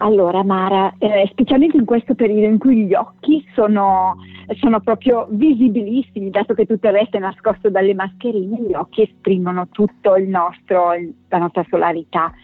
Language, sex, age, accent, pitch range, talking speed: Italian, female, 50-69, native, 190-260 Hz, 150 wpm